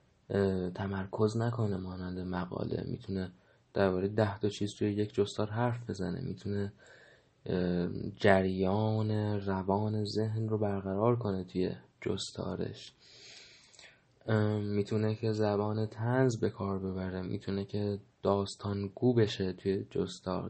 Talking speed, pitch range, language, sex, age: 105 wpm, 100-120 Hz, Persian, male, 20-39